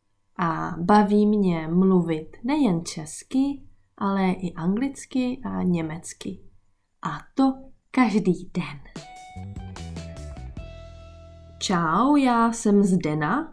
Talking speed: 90 wpm